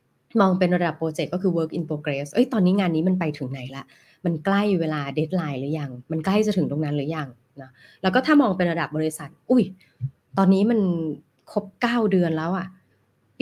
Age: 20-39